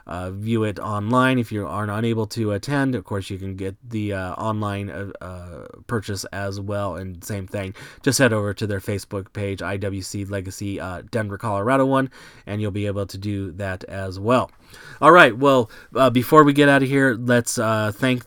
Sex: male